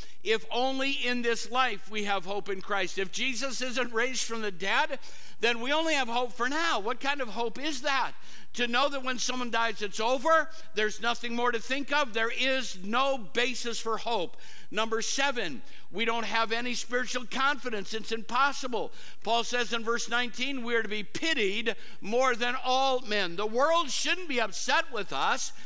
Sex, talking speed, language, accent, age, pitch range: male, 190 wpm, English, American, 60-79, 215-255 Hz